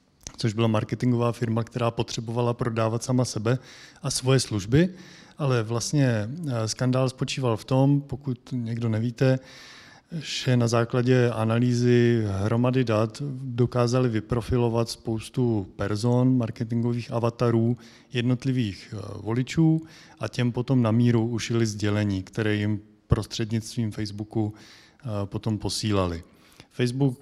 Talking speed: 110 wpm